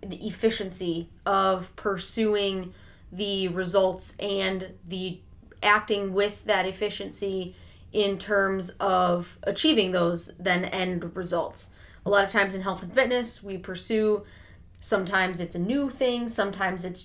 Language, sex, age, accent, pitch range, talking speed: English, female, 20-39, American, 180-205 Hz, 130 wpm